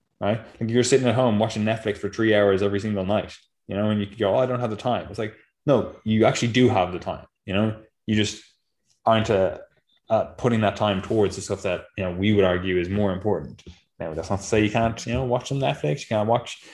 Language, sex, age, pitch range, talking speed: English, male, 20-39, 100-115 Hz, 265 wpm